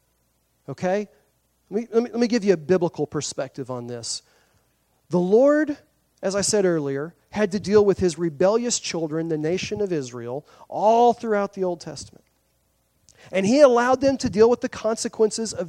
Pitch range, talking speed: 140-200 Hz, 175 wpm